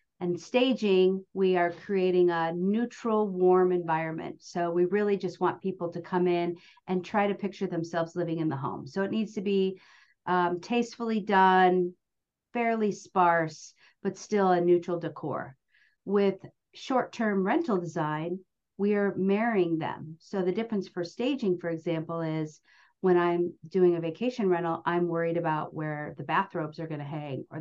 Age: 50-69